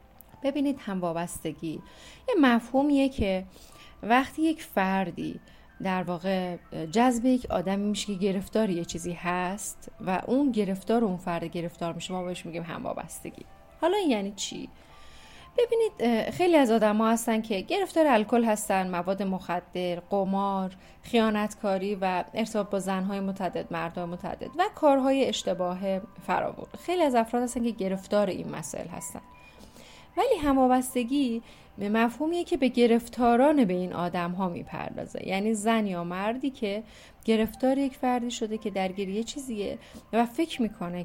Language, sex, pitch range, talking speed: Persian, female, 185-250 Hz, 145 wpm